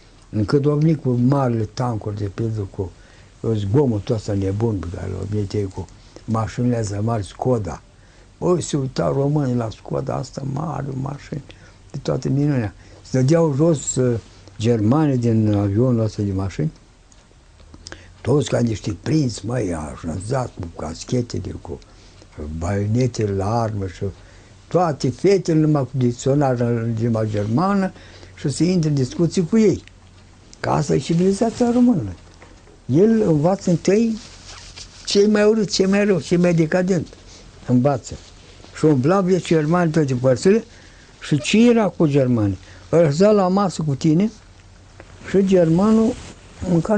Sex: male